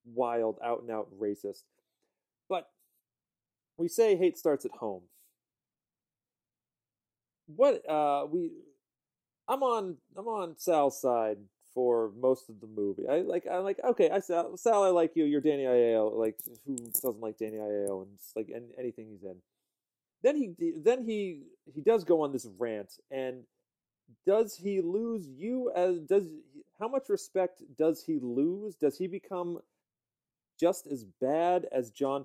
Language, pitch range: English, 115-180 Hz